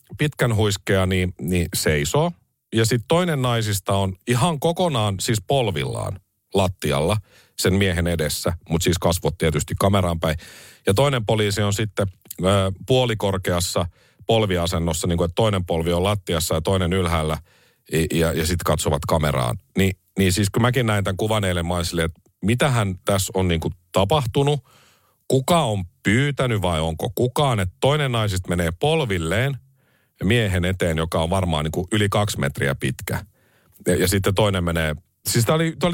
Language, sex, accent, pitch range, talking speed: Finnish, male, native, 90-130 Hz, 155 wpm